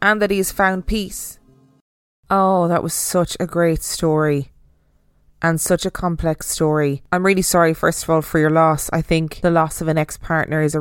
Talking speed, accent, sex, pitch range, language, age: 200 wpm, Irish, female, 160-195 Hz, English, 20-39